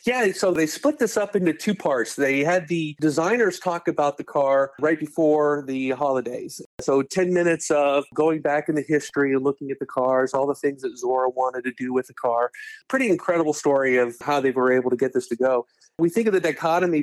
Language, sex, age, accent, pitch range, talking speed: English, male, 40-59, American, 135-160 Hz, 220 wpm